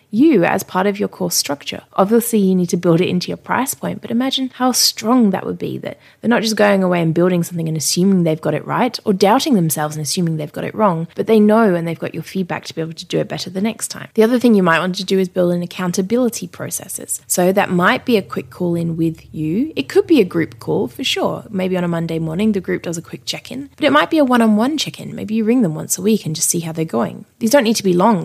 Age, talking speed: 20-39, 285 wpm